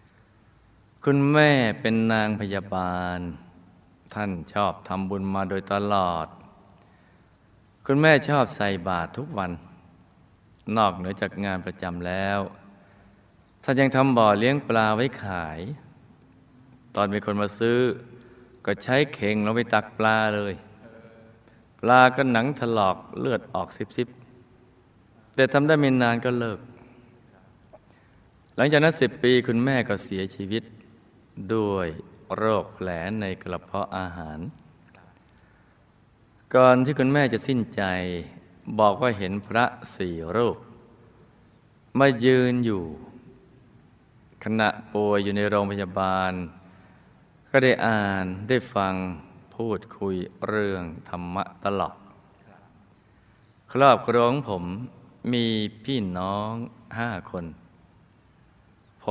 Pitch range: 95-120 Hz